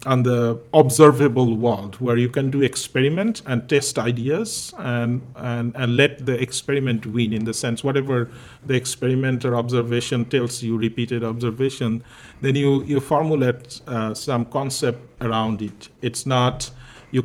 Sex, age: male, 40-59